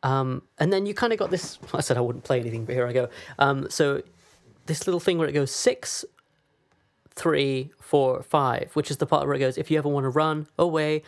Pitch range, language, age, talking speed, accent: 125-155 Hz, English, 20-39, 245 wpm, British